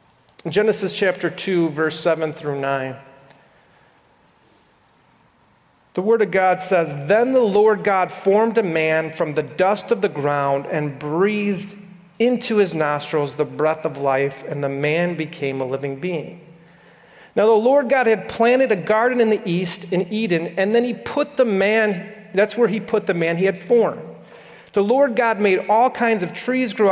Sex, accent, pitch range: male, American, 165-240 Hz